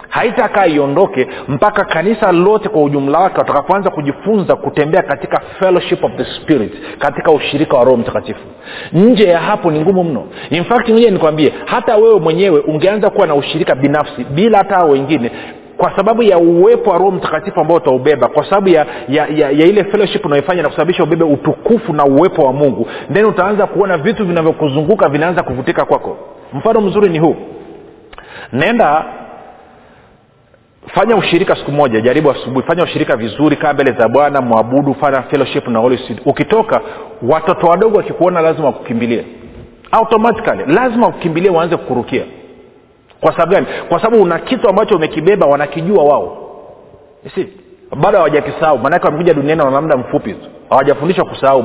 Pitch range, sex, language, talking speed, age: 145-200 Hz, male, Swahili, 155 wpm, 40-59